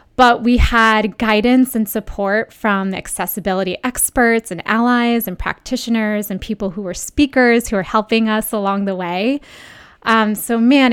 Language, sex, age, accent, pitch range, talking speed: English, female, 20-39, American, 200-240 Hz, 155 wpm